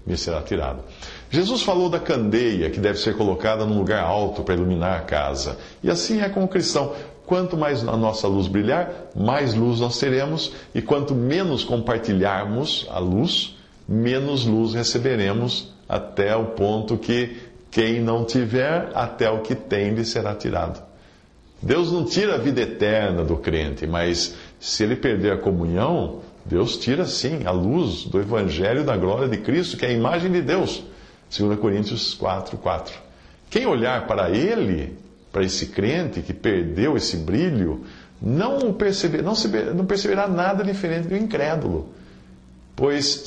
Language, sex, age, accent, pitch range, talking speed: English, male, 50-69, Brazilian, 95-145 Hz, 155 wpm